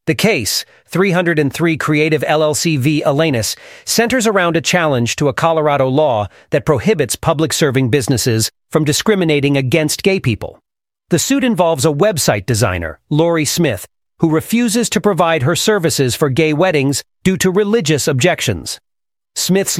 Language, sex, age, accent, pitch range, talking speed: English, male, 40-59, American, 135-170 Hz, 140 wpm